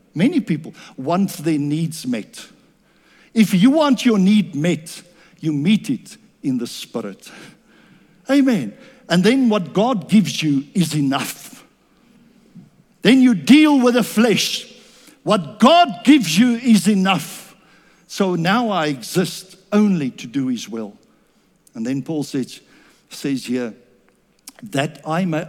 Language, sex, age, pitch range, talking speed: English, male, 60-79, 155-225 Hz, 135 wpm